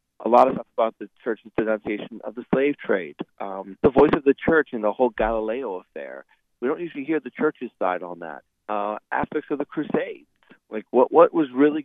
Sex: male